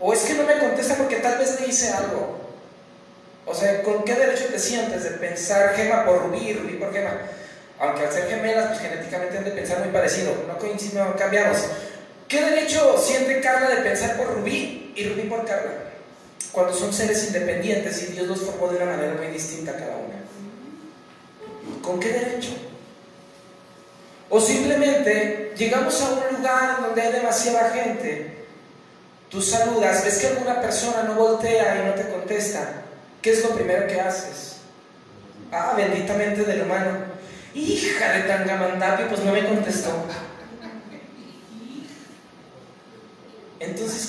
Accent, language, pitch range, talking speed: Mexican, Spanish, 195-255 Hz, 150 wpm